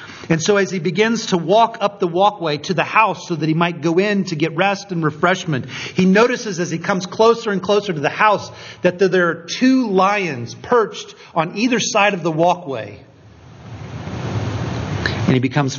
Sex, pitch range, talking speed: male, 130-195 Hz, 190 wpm